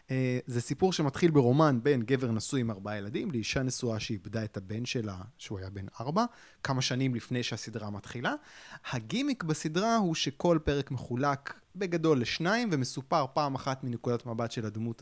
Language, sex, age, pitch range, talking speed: Hebrew, male, 20-39, 120-165 Hz, 160 wpm